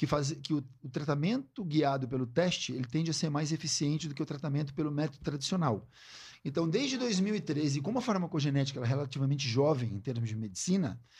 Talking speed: 195 wpm